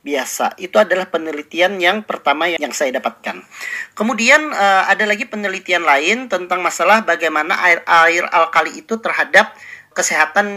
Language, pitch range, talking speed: Indonesian, 175-240 Hz, 140 wpm